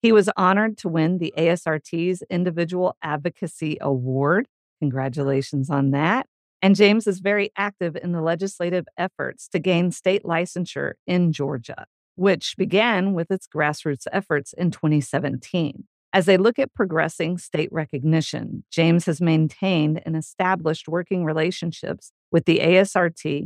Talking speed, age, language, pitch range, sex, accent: 135 wpm, 50-69, English, 160-190 Hz, female, American